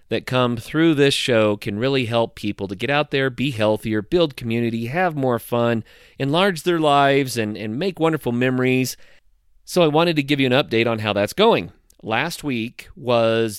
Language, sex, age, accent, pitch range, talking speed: English, male, 40-59, American, 110-140 Hz, 190 wpm